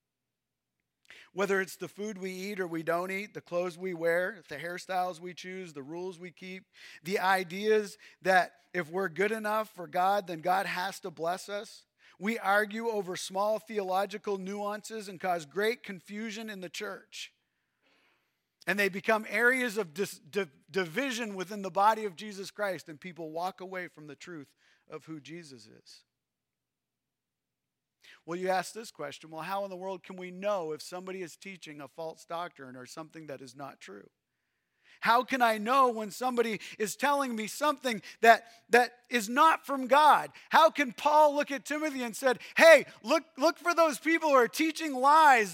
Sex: male